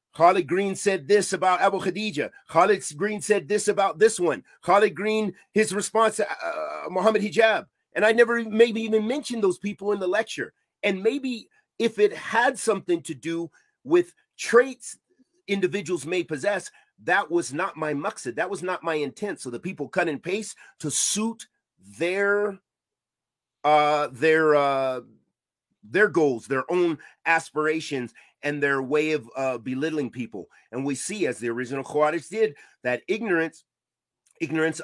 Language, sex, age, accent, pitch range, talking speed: English, male, 40-59, American, 145-205 Hz, 160 wpm